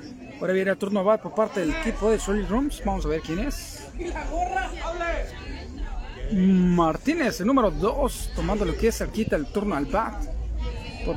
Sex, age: male, 40-59